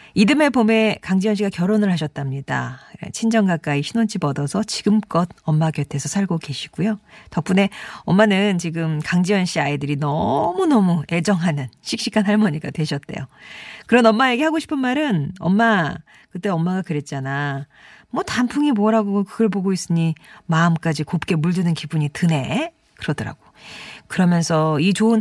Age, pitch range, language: 40-59, 155-215 Hz, Korean